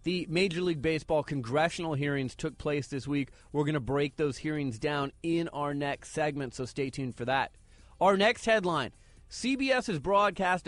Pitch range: 145-180 Hz